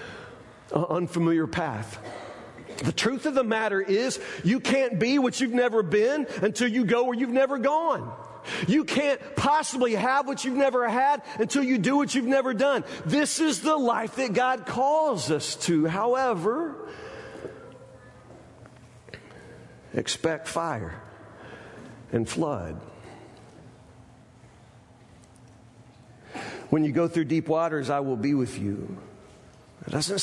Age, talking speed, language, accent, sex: 50-69, 130 wpm, English, American, male